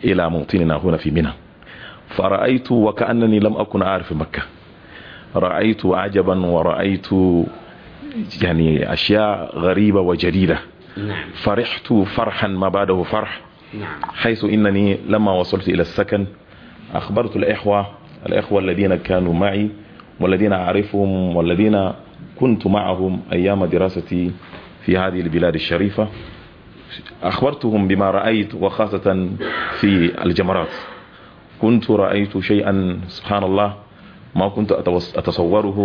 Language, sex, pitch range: Arabic, male, 90-105 Hz